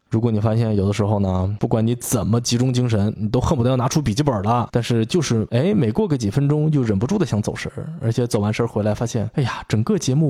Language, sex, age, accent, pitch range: Chinese, male, 20-39, native, 105-130 Hz